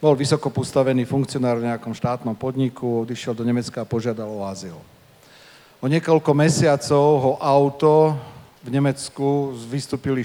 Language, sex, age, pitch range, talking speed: Slovak, male, 40-59, 120-145 Hz, 135 wpm